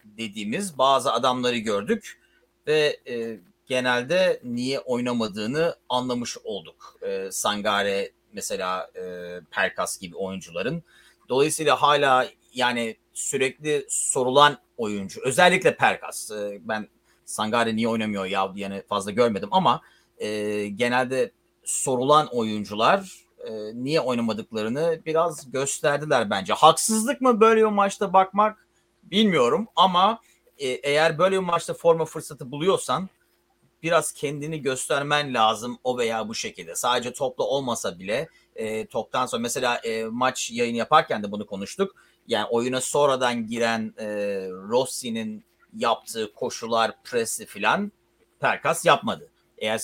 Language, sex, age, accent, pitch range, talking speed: Turkish, male, 30-49, native, 110-175 Hz, 120 wpm